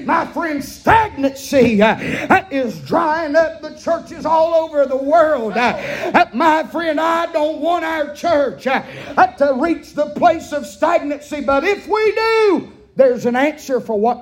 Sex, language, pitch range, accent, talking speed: male, English, 215-300 Hz, American, 155 wpm